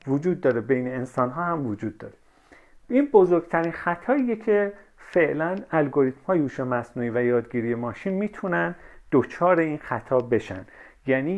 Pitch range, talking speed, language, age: 125-180 Hz, 135 wpm, Persian, 40-59